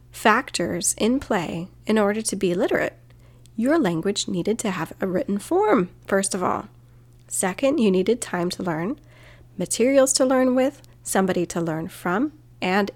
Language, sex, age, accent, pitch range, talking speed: English, female, 30-49, American, 165-215 Hz, 160 wpm